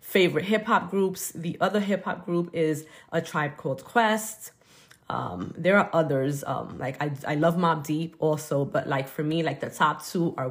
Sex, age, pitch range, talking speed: female, 20-39, 160-210 Hz, 200 wpm